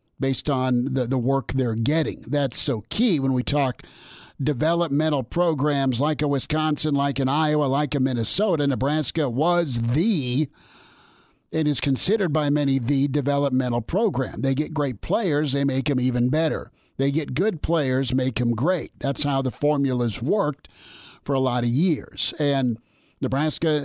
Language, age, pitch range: English, 50-69, 130-155 Hz